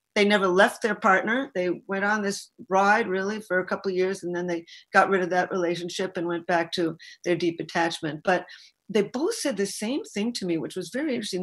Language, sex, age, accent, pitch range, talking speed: English, female, 50-69, American, 175-235 Hz, 230 wpm